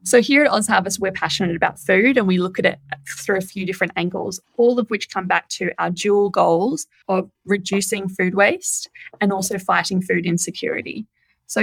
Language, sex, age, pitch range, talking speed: English, female, 20-39, 185-215 Hz, 195 wpm